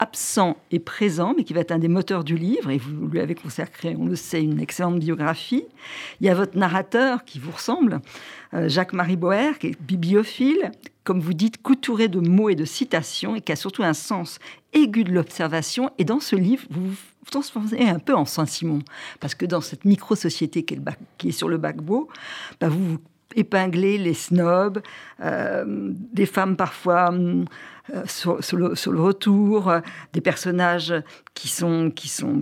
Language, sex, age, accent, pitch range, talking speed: French, female, 50-69, French, 160-205 Hz, 190 wpm